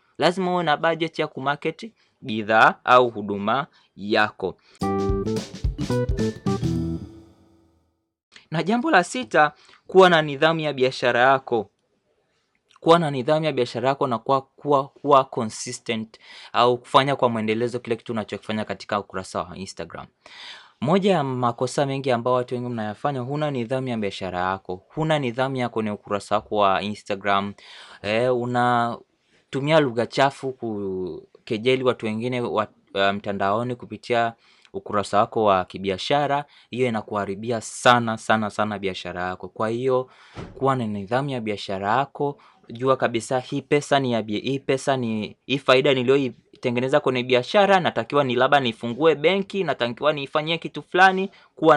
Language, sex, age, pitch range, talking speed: Swahili, male, 20-39, 110-140 Hz, 135 wpm